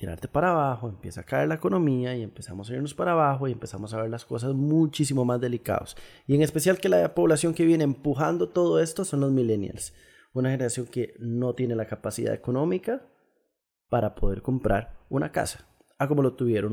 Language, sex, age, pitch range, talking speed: Spanish, male, 20-39, 115-155 Hz, 195 wpm